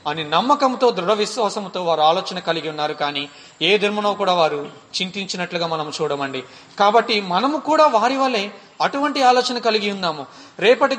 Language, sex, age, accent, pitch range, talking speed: Telugu, male, 30-49, native, 160-225 Hz, 140 wpm